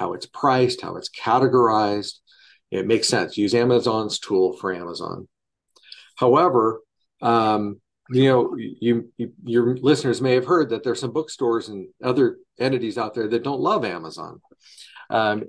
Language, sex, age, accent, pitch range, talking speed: English, male, 50-69, American, 105-135 Hz, 150 wpm